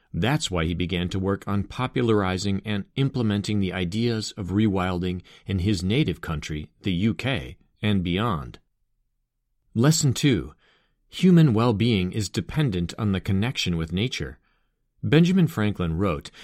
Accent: American